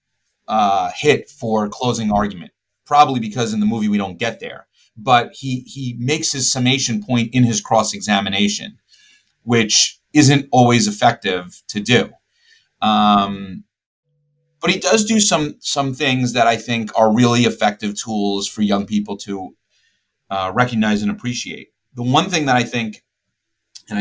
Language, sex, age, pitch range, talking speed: English, male, 30-49, 105-130 Hz, 150 wpm